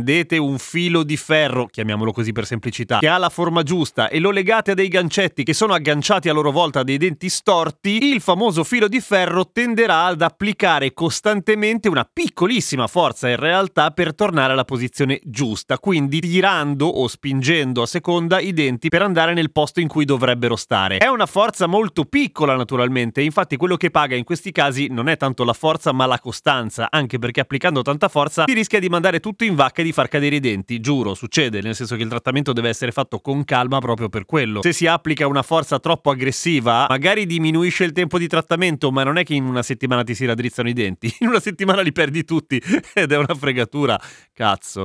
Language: Italian